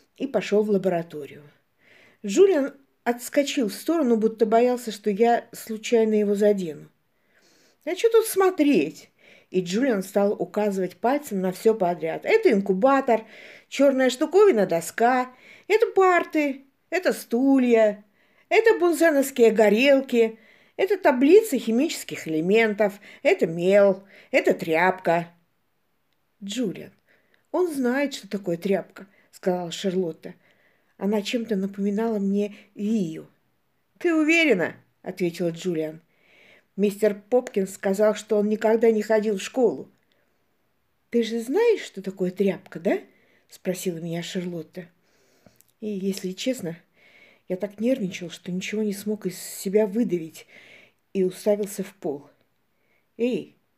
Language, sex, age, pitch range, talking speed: Russian, female, 50-69, 185-250 Hz, 115 wpm